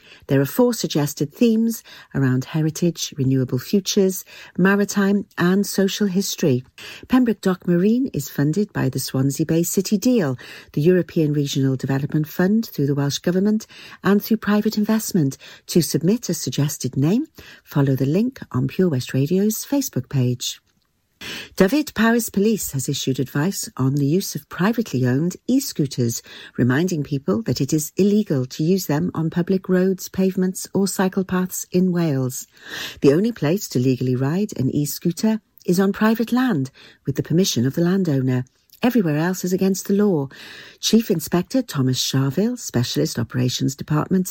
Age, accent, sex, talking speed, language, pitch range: 50-69, British, female, 155 wpm, English, 145-205 Hz